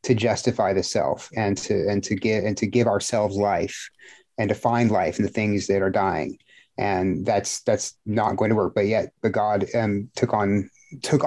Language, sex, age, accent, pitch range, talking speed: English, male, 30-49, American, 105-125 Hz, 210 wpm